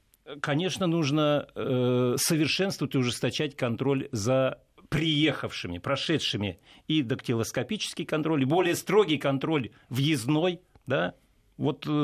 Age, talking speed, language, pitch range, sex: 50-69, 100 wpm, Russian, 130-175 Hz, male